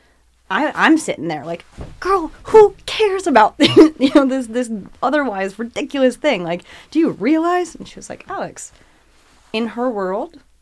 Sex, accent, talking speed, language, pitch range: female, American, 165 wpm, English, 160-230 Hz